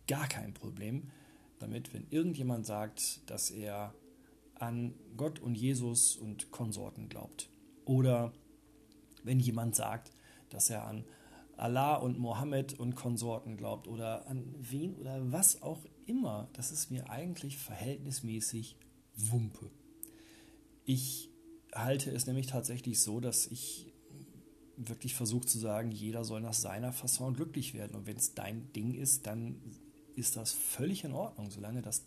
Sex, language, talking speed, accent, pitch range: male, German, 140 wpm, German, 115-145 Hz